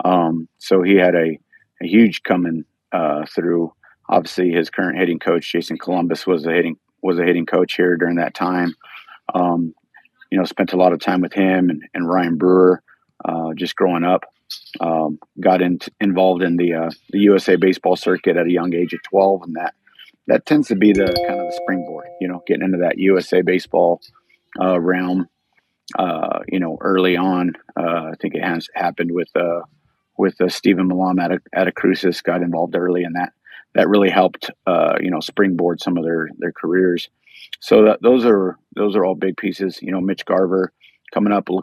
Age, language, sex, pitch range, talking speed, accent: 40-59, English, male, 85-95 Hz, 195 wpm, American